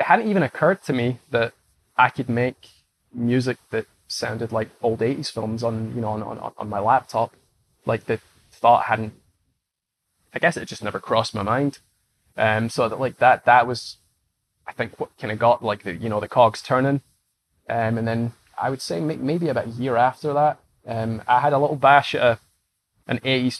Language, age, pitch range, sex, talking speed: English, 20-39, 105-125 Hz, male, 200 wpm